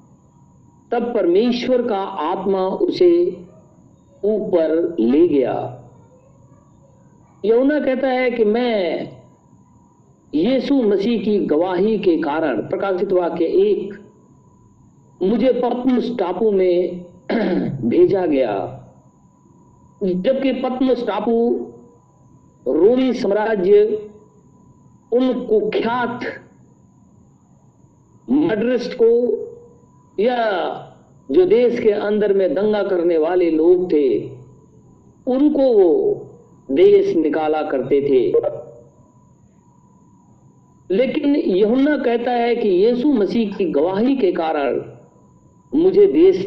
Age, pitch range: 50-69, 195-295 Hz